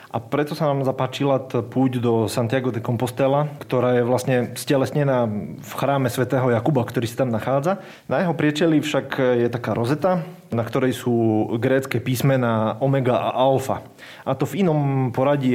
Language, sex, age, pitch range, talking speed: Slovak, male, 30-49, 120-135 Hz, 160 wpm